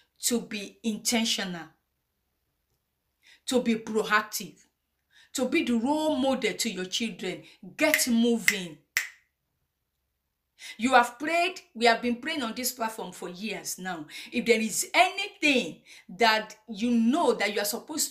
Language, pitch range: English, 195-270 Hz